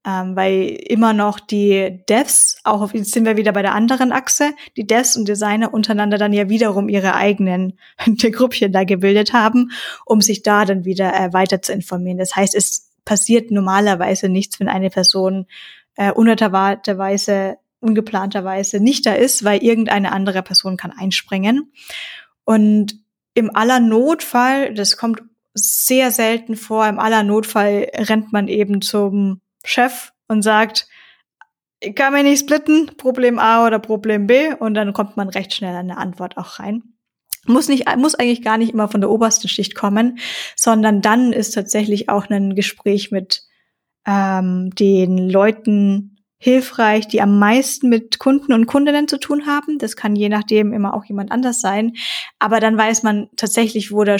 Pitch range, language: 200-230 Hz, German